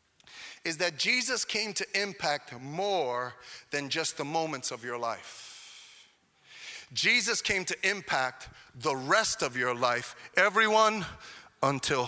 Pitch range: 135-225 Hz